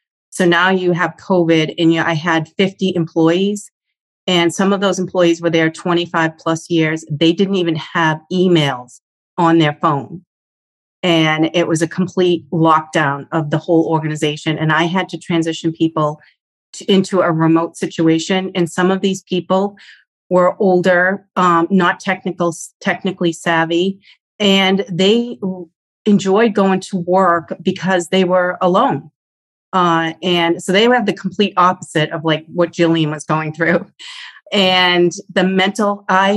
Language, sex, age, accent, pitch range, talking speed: English, female, 40-59, American, 165-190 Hz, 150 wpm